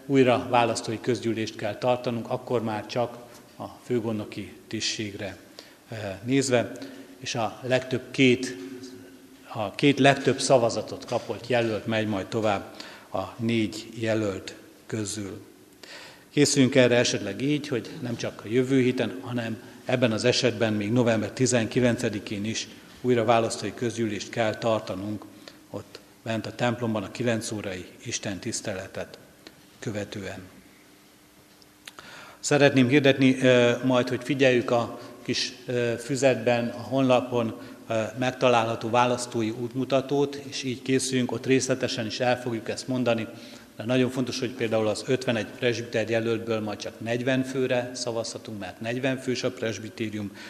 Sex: male